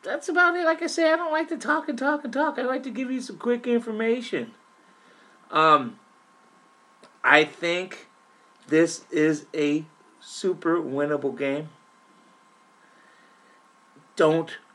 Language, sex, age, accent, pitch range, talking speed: English, male, 50-69, American, 150-230 Hz, 135 wpm